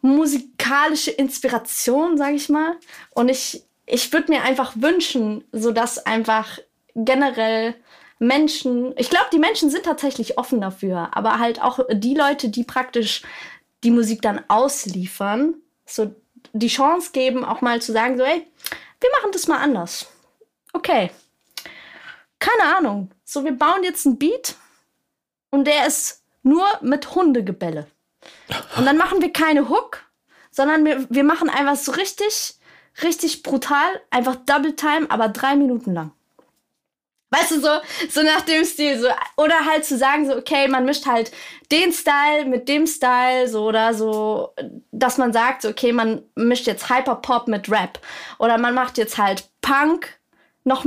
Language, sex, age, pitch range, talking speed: German, female, 20-39, 230-300 Hz, 155 wpm